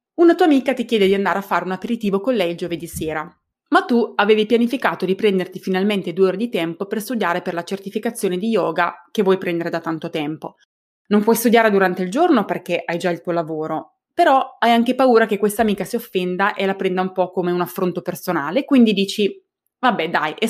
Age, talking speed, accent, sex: 20-39, 220 wpm, native, female